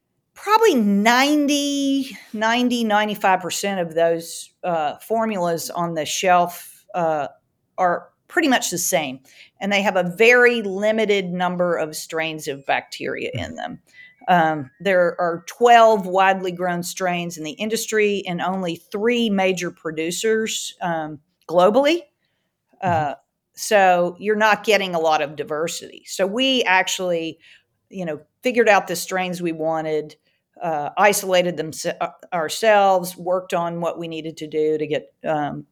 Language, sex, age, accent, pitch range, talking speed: English, female, 40-59, American, 165-220 Hz, 135 wpm